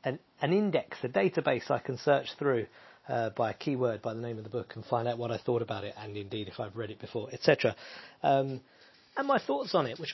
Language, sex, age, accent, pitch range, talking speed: English, male, 40-59, British, 115-160 Hz, 245 wpm